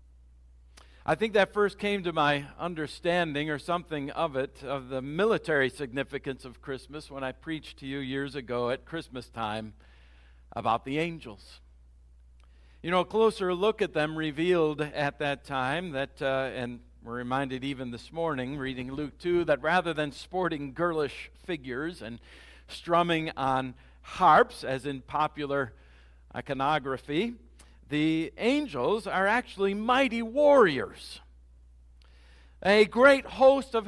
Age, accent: 50-69, American